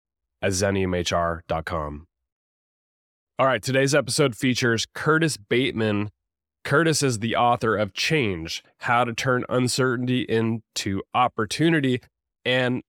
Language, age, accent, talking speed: English, 20-39, American, 100 wpm